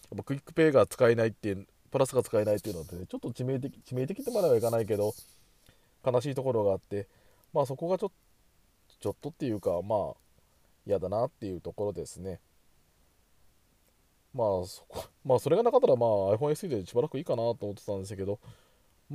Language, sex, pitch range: Japanese, male, 100-155 Hz